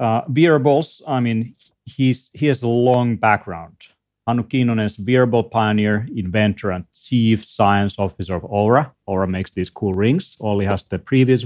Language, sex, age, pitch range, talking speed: English, male, 40-59, 100-120 Hz, 160 wpm